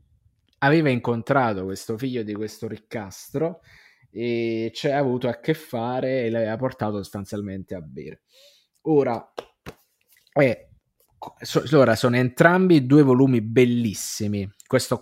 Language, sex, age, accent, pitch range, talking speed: Italian, male, 20-39, native, 110-140 Hz, 110 wpm